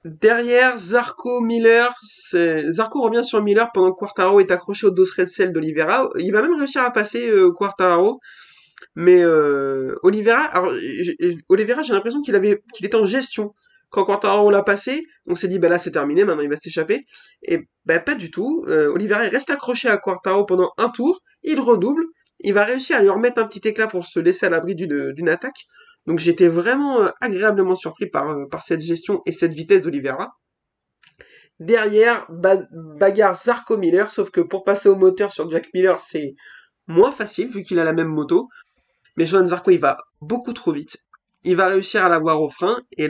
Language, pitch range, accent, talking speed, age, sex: French, 175-250 Hz, French, 200 wpm, 20-39, male